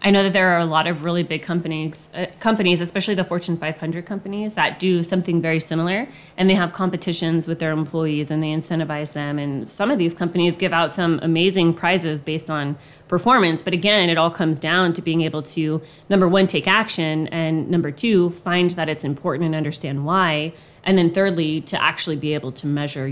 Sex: female